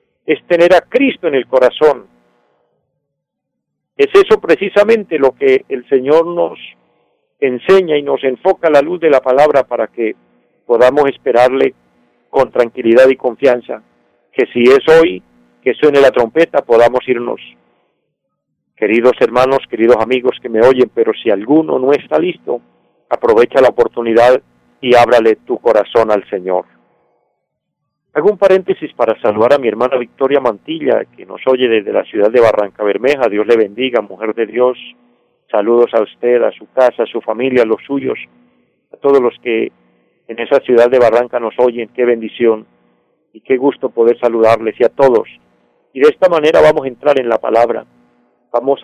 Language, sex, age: Spanish, male, 50-69